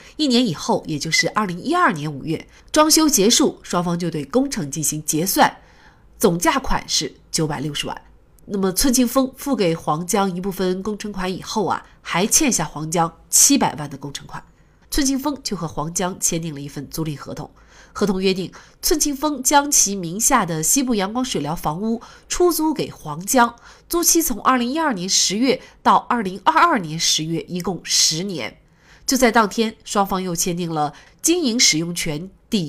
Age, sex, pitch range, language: 30-49, female, 165-260 Hz, Chinese